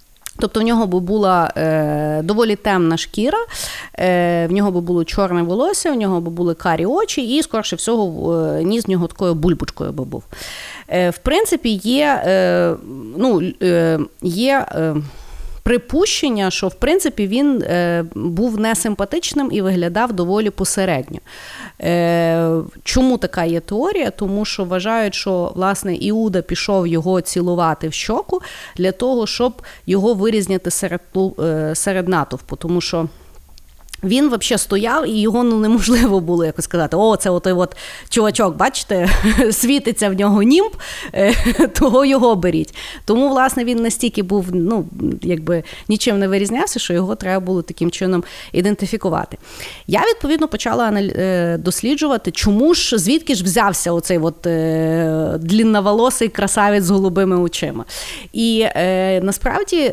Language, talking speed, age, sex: Ukrainian, 140 wpm, 30-49, female